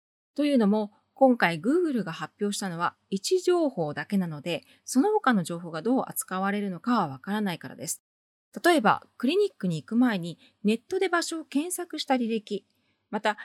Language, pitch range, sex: Japanese, 175-265 Hz, female